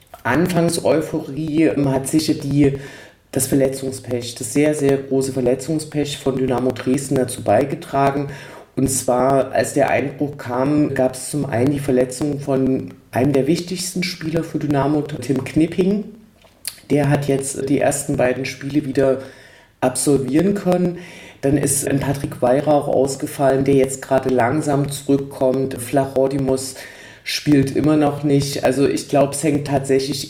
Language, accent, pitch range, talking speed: German, German, 130-145 Hz, 140 wpm